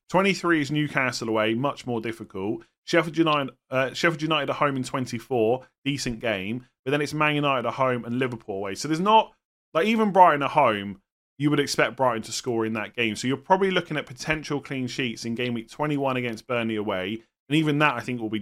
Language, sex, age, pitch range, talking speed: English, male, 30-49, 115-150 Hz, 210 wpm